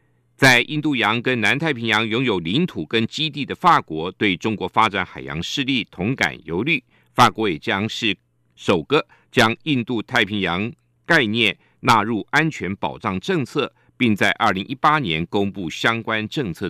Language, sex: Chinese, male